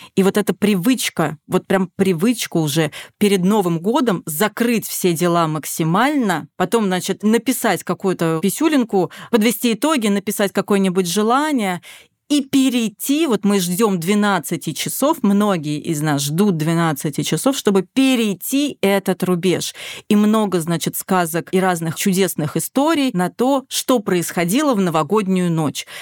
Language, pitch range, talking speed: Russian, 180-230 Hz, 130 wpm